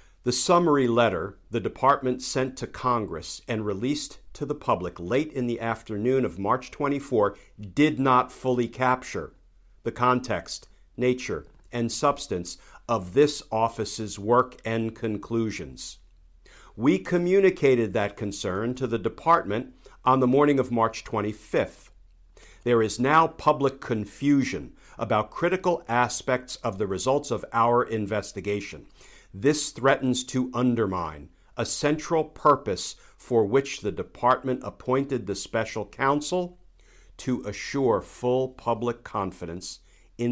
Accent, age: American, 50-69